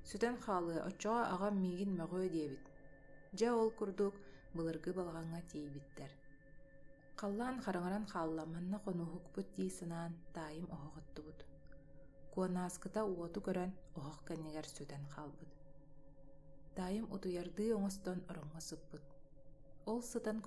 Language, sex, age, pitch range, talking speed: Russian, female, 30-49, 155-185 Hz, 105 wpm